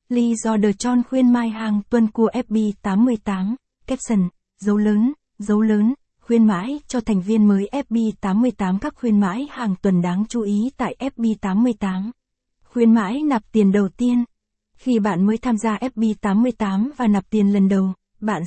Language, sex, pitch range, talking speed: Vietnamese, female, 205-245 Hz, 160 wpm